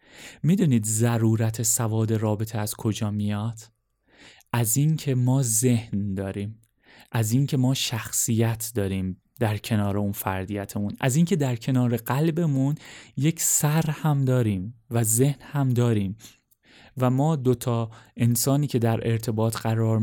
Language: Persian